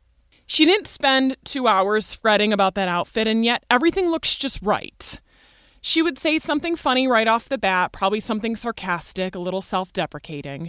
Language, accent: English, American